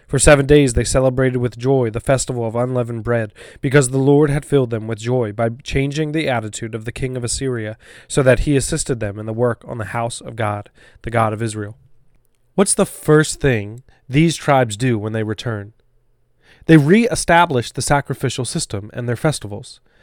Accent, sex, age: American, male, 20-39